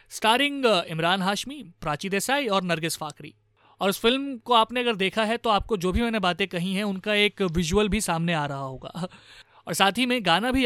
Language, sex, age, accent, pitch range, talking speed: Hindi, male, 30-49, native, 165-215 Hz, 215 wpm